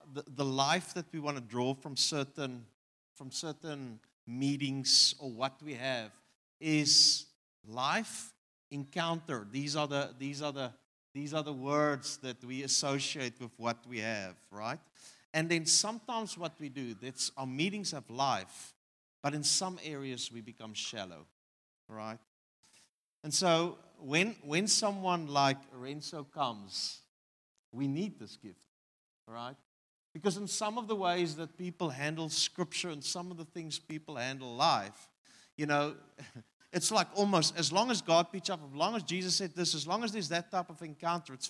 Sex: male